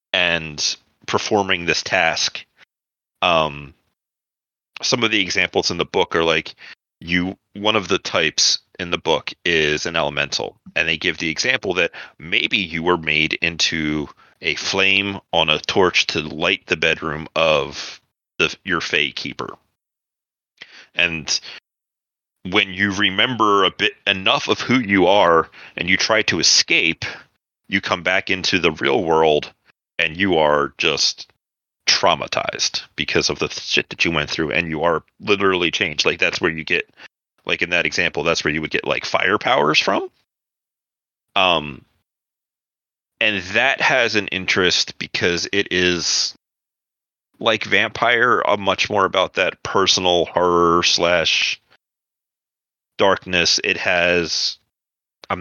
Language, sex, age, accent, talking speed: English, male, 30-49, American, 145 wpm